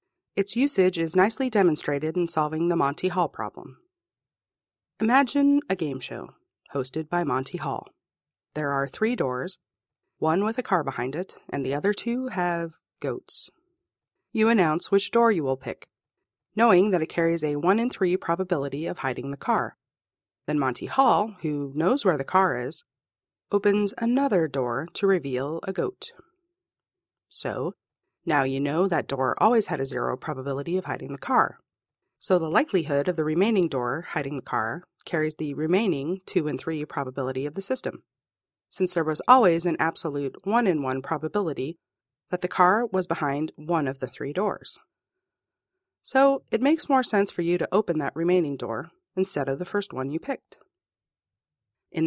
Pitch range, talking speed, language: 145-205 Hz, 165 wpm, English